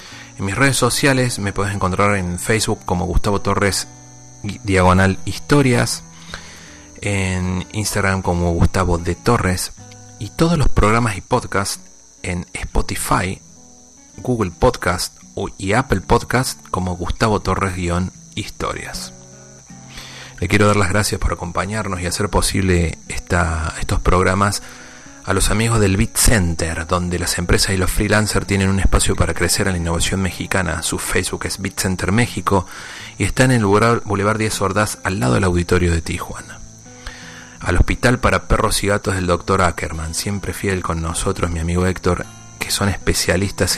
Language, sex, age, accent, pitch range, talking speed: Spanish, male, 40-59, Argentinian, 90-105 Hz, 145 wpm